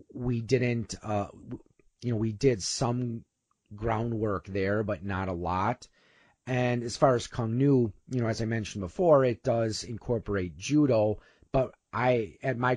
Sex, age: male, 30-49